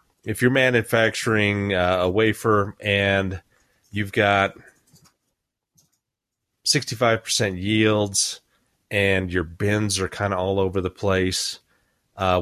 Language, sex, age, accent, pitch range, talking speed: English, male, 30-49, American, 95-115 Hz, 105 wpm